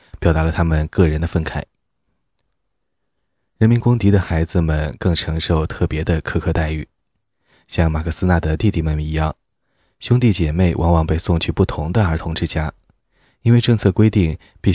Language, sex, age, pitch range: Chinese, male, 20-39, 80-95 Hz